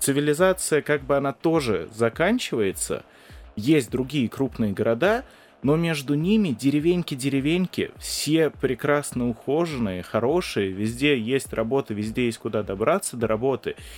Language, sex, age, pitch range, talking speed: Russian, male, 30-49, 110-150 Hz, 115 wpm